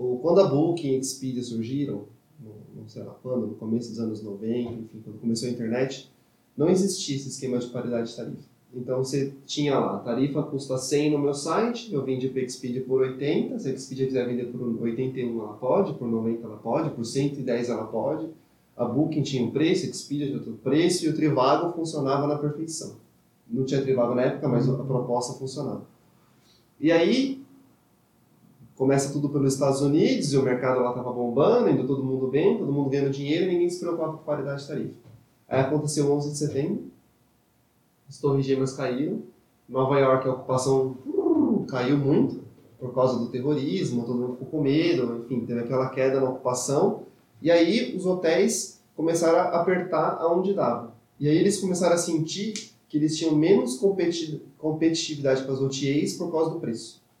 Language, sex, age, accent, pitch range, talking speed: Portuguese, male, 20-39, Brazilian, 125-155 Hz, 180 wpm